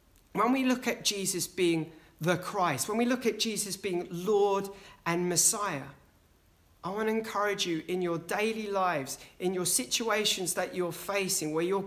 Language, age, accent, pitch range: English, 40-59, British, 145-230 Hz